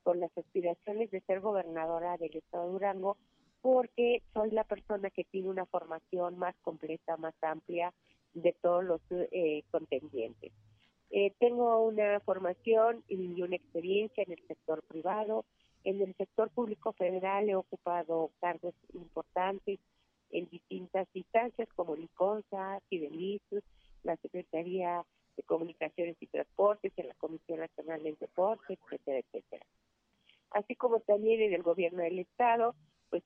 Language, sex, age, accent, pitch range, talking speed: Spanish, female, 40-59, Mexican, 165-205 Hz, 135 wpm